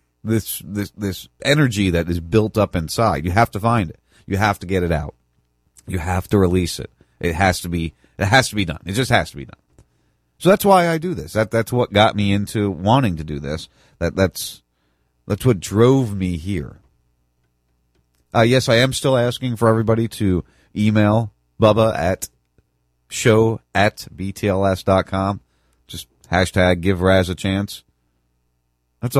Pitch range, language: 80-115 Hz, English